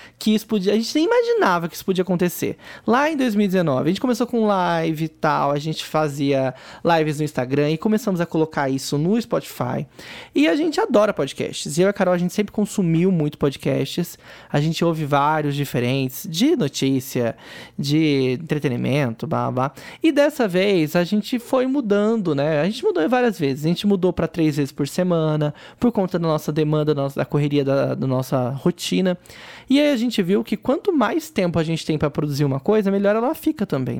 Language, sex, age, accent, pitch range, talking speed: Portuguese, male, 20-39, Brazilian, 150-220 Hz, 205 wpm